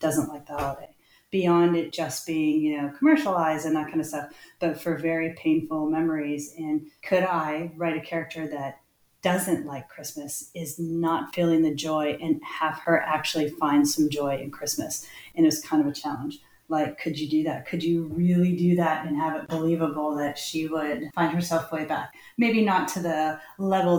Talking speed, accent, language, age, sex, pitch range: 195 wpm, American, English, 30-49, female, 150-175 Hz